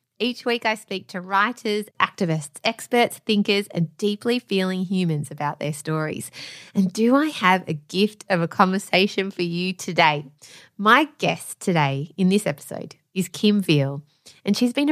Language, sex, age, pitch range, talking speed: English, female, 20-39, 160-210 Hz, 160 wpm